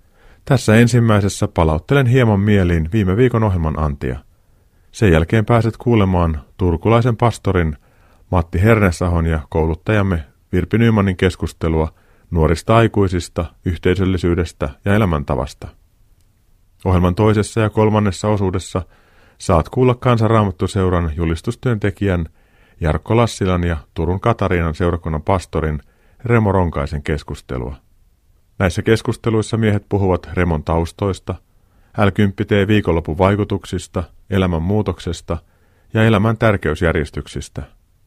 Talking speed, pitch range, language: 90 wpm, 85-105 Hz, Finnish